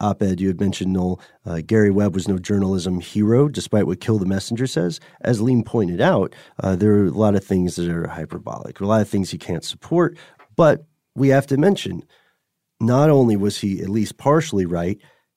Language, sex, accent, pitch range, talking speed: English, male, American, 110-155 Hz, 205 wpm